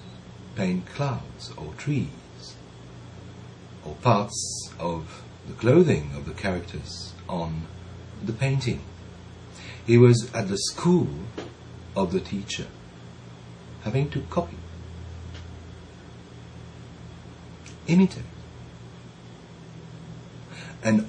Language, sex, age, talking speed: English, male, 60-79, 80 wpm